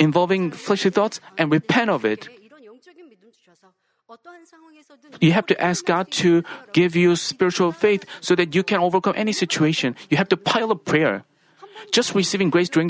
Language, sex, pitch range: Korean, male, 170-225 Hz